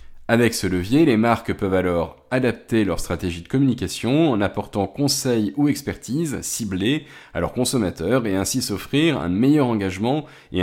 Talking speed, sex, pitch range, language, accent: 160 wpm, male, 90-130 Hz, French, French